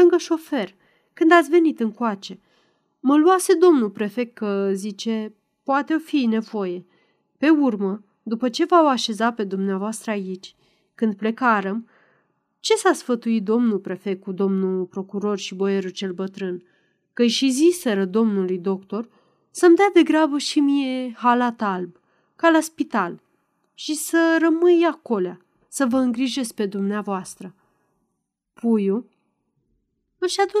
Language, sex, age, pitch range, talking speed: Romanian, female, 30-49, 200-265 Hz, 130 wpm